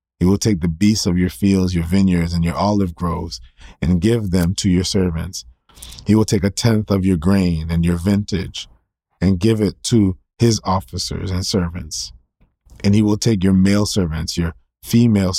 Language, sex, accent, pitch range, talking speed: English, male, American, 85-105 Hz, 185 wpm